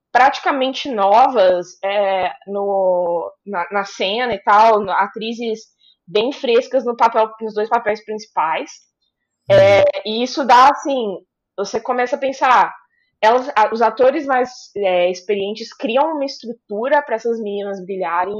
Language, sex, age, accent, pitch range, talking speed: Portuguese, female, 20-39, Brazilian, 190-250 Hz, 110 wpm